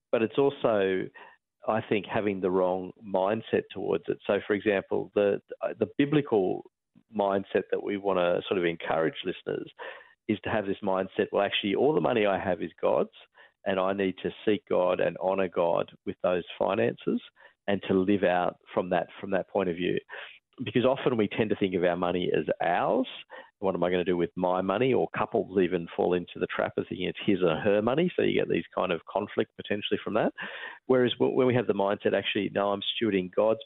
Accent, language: Australian, English